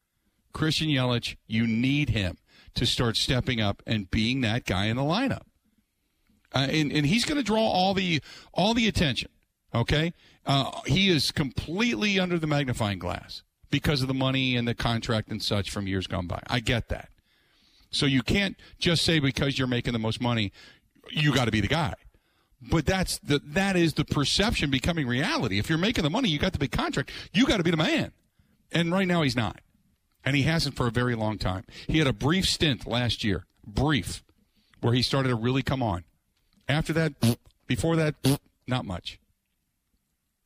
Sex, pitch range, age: male, 105-150 Hz, 50-69